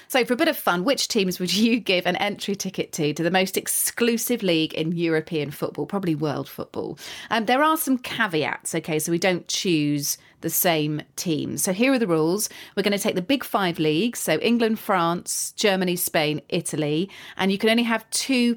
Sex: female